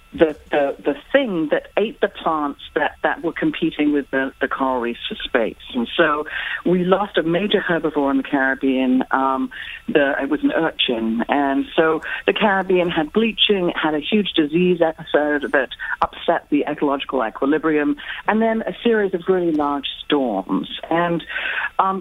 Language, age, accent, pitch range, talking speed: English, 40-59, American, 140-190 Hz, 165 wpm